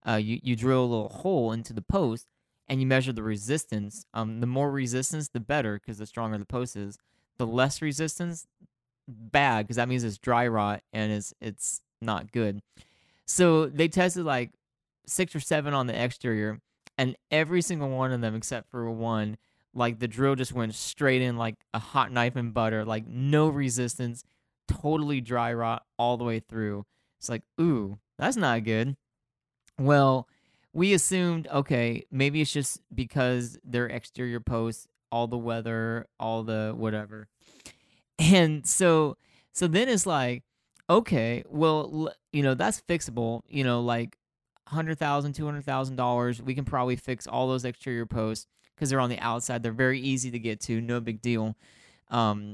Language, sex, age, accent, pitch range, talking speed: English, male, 20-39, American, 115-140 Hz, 170 wpm